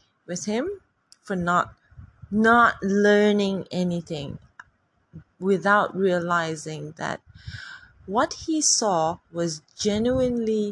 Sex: female